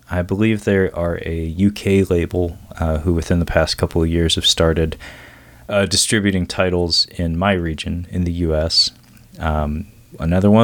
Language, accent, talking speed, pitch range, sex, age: English, American, 165 wpm, 85-110 Hz, male, 30-49